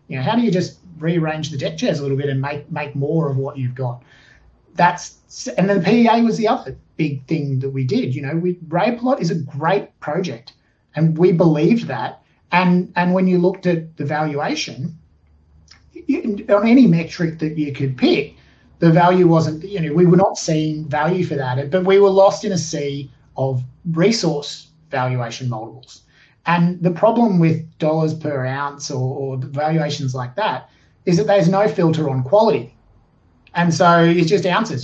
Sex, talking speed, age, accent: male, 190 wpm, 30-49, Australian